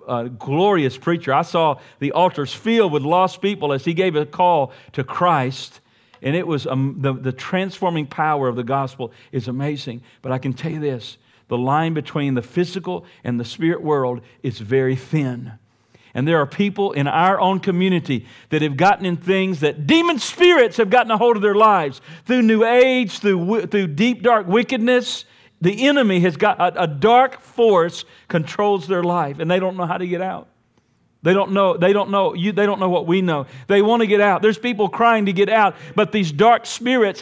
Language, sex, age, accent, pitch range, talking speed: English, male, 50-69, American, 140-205 Hz, 205 wpm